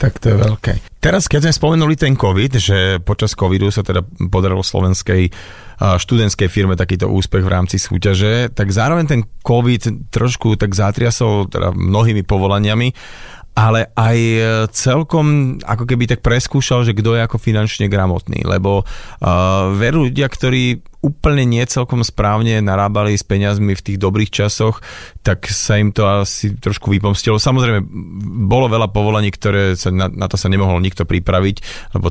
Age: 30-49